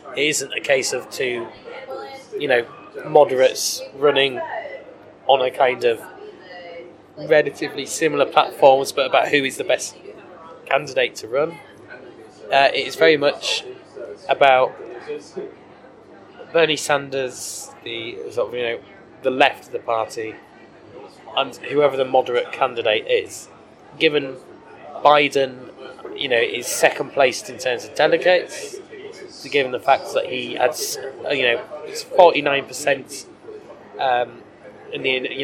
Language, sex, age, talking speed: English, male, 20-39, 120 wpm